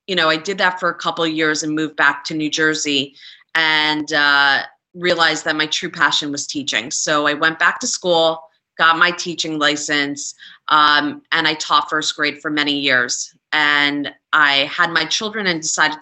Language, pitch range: English, 150-185 Hz